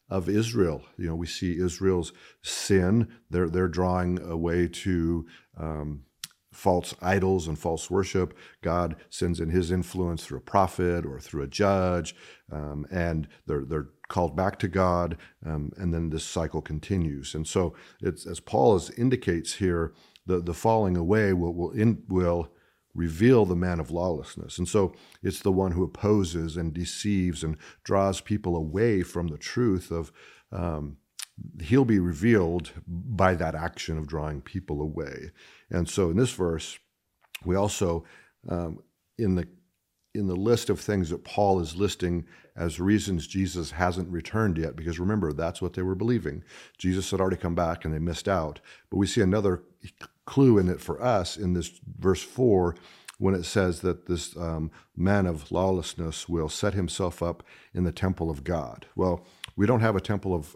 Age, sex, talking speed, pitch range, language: 50-69, male, 170 wpm, 85-95 Hz, English